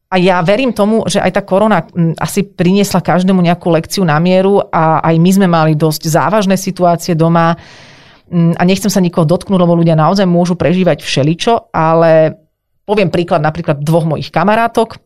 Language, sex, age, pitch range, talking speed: Slovak, female, 30-49, 160-195 Hz, 165 wpm